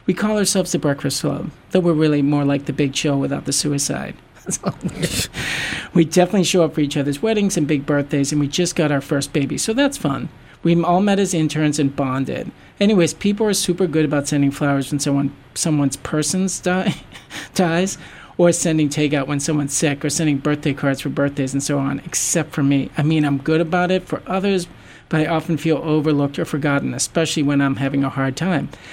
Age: 40-59